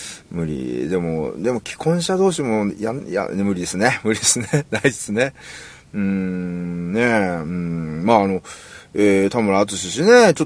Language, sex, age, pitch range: Japanese, male, 30-49, 100-150 Hz